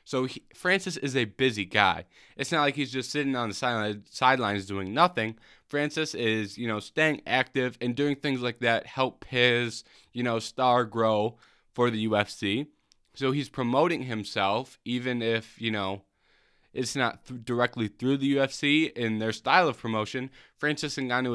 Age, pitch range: 20-39, 110-140 Hz